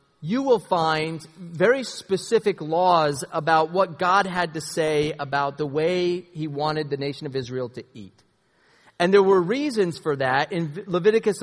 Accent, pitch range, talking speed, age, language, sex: American, 140-175 Hz, 165 wpm, 30-49, English, male